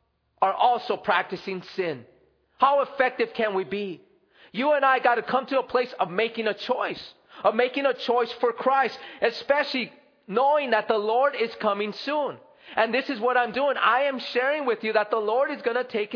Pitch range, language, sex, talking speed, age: 225-280 Hz, English, male, 200 wpm, 30-49